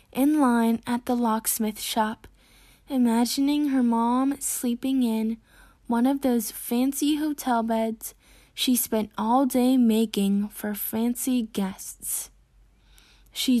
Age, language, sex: 10-29, English, female